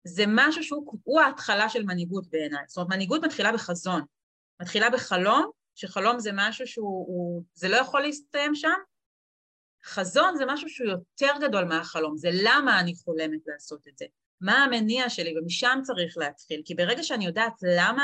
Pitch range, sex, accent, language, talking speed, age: 180-270 Hz, female, native, Hebrew, 165 wpm, 30-49